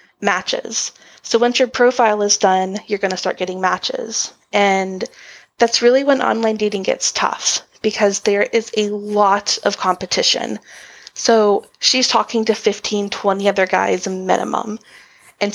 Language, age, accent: English, 20-39, American